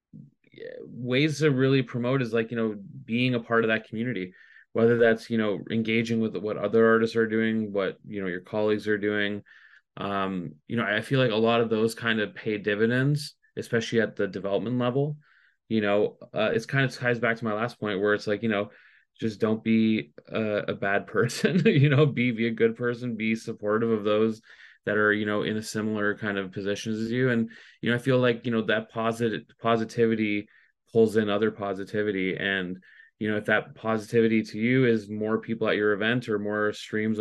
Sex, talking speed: male, 210 wpm